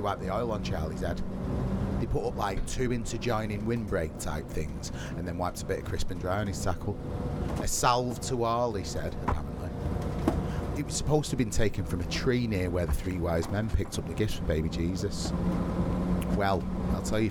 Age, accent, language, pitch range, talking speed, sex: 30-49, British, English, 90-115 Hz, 210 wpm, male